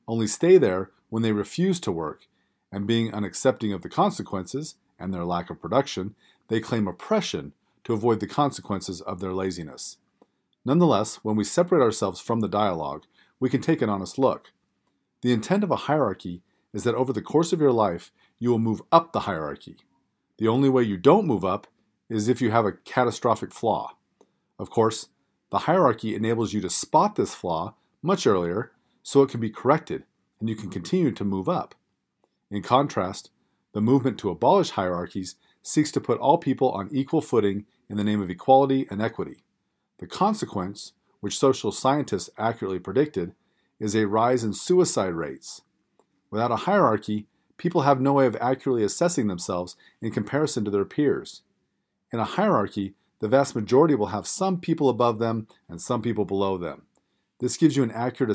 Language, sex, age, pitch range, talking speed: English, male, 40-59, 100-130 Hz, 180 wpm